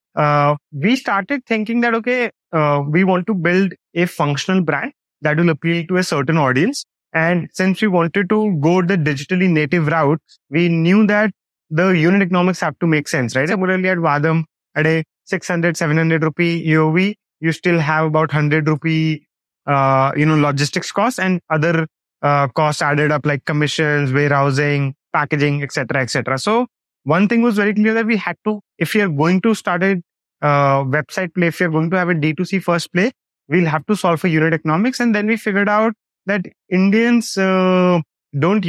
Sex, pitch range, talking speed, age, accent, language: male, 155-195 Hz, 185 wpm, 20-39, Indian, English